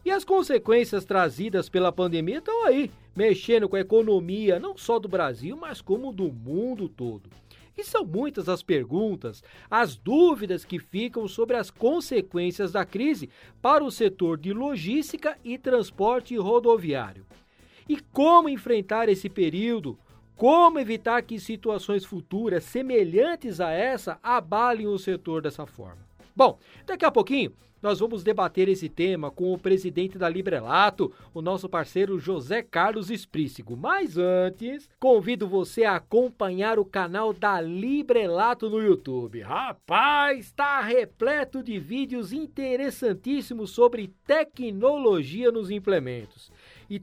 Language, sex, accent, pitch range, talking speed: Portuguese, male, Brazilian, 185-270 Hz, 135 wpm